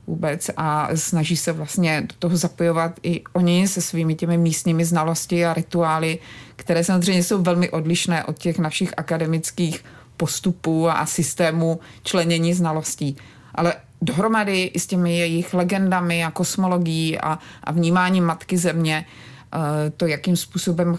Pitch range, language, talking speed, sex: 155-175 Hz, Czech, 135 wpm, female